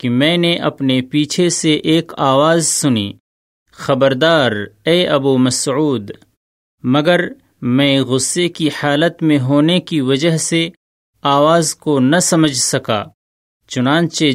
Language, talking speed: Urdu, 120 wpm